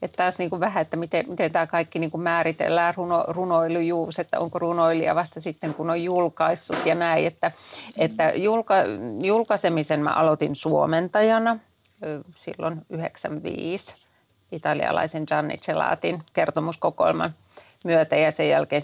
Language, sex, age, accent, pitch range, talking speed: Finnish, female, 40-59, native, 160-180 Hz, 125 wpm